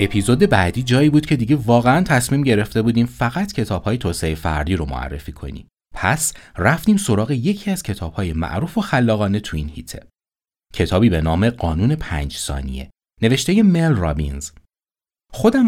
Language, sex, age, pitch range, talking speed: Persian, male, 30-49, 85-125 Hz, 160 wpm